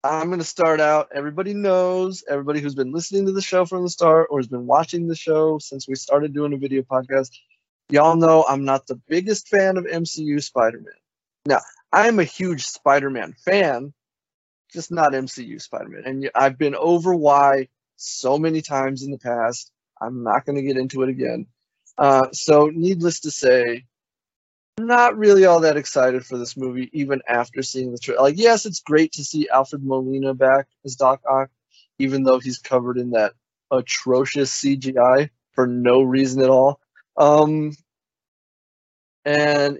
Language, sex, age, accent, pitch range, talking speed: English, male, 20-39, American, 130-165 Hz, 170 wpm